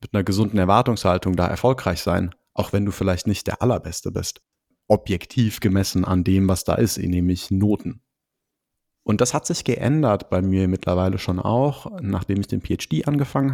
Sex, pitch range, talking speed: male, 95-120 Hz, 175 wpm